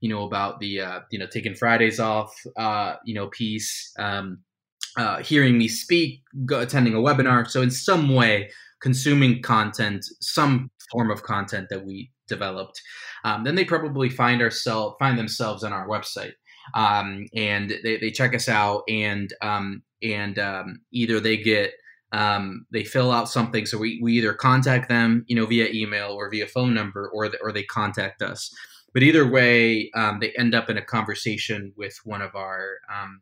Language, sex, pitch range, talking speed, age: English, male, 105-125 Hz, 180 wpm, 20-39